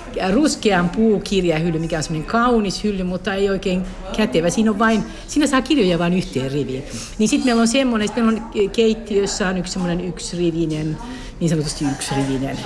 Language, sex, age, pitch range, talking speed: Finnish, female, 60-79, 160-210 Hz, 160 wpm